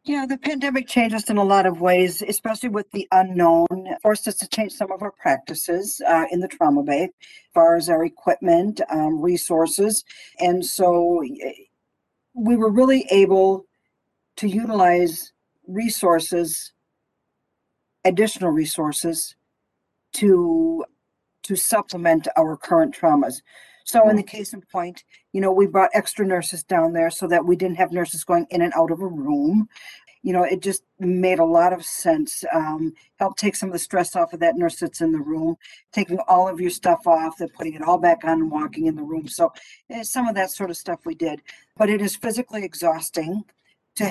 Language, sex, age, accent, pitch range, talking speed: English, female, 50-69, American, 170-220 Hz, 185 wpm